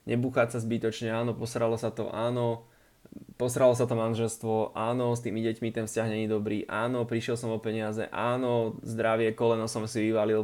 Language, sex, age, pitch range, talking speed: Slovak, male, 20-39, 110-125 Hz, 180 wpm